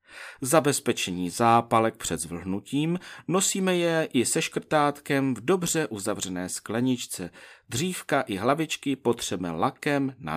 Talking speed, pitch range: 110 wpm, 100-145 Hz